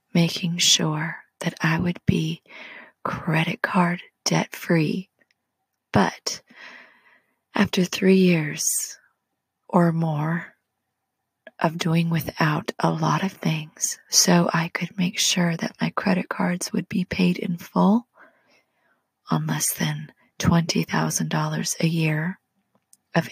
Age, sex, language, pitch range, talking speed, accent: 30-49, female, English, 160-190 Hz, 110 wpm, American